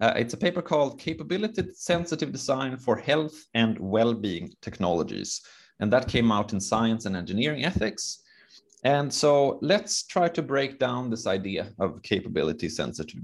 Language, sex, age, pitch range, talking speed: English, male, 30-49, 110-155 Hz, 145 wpm